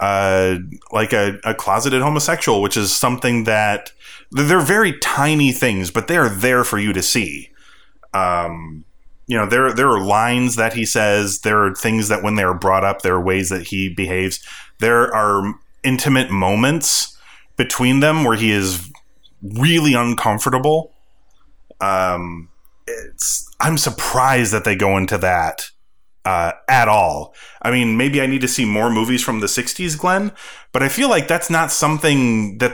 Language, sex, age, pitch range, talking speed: English, male, 30-49, 95-130 Hz, 165 wpm